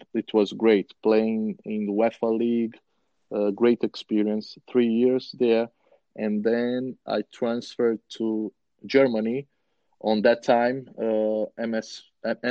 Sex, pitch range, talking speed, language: male, 110-125 Hz, 115 wpm, English